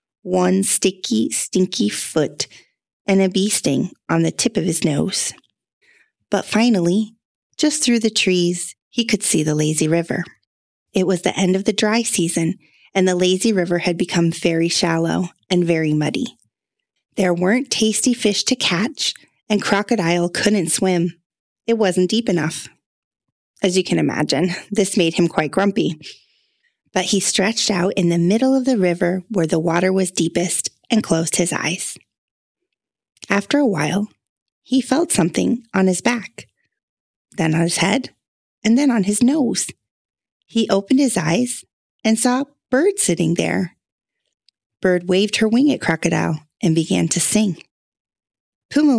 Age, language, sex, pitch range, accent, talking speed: 30-49, English, female, 170-220 Hz, American, 155 wpm